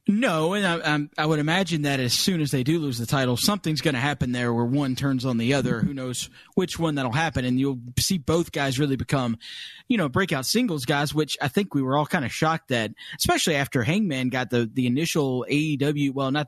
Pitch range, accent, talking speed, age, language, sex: 140-195 Hz, American, 235 wpm, 30-49, English, male